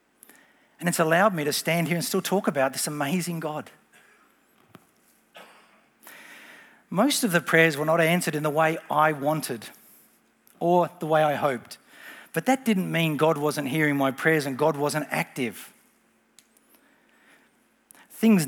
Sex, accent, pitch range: male, Australian, 145-200 Hz